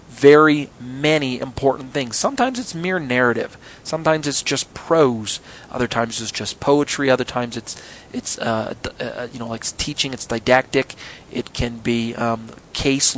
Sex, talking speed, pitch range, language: male, 160 wpm, 120-150 Hz, English